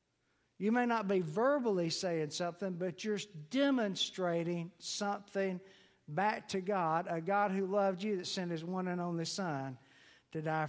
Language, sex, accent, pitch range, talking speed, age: English, male, American, 160-215 Hz, 155 wpm, 60-79